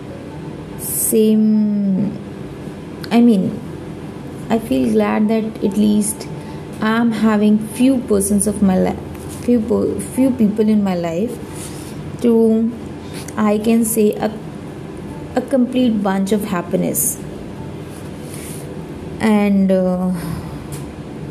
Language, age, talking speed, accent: Hindi, 20-39, 95 wpm, native